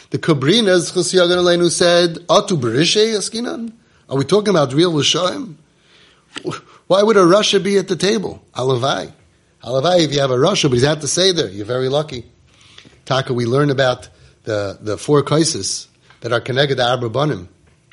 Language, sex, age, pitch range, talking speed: English, male, 30-49, 125-160 Hz, 165 wpm